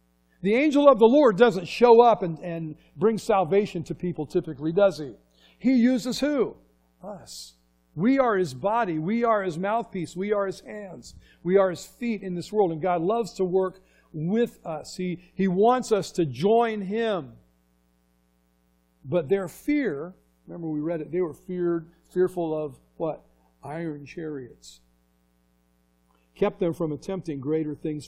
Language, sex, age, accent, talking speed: English, male, 50-69, American, 160 wpm